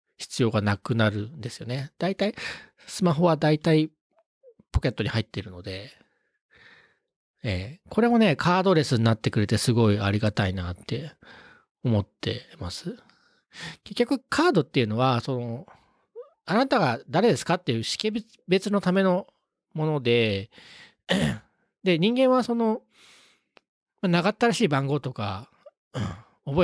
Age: 40-59